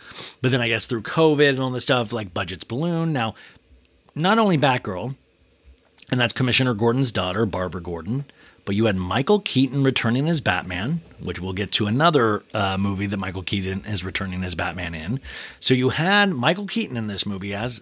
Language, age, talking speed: English, 30-49, 190 wpm